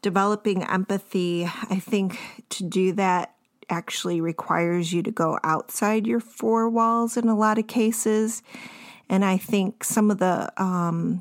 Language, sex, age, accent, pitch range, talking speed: English, female, 30-49, American, 175-220 Hz, 150 wpm